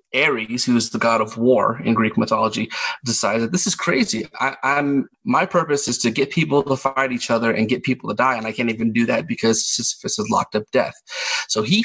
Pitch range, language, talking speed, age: 120-140 Hz, English, 235 wpm, 30-49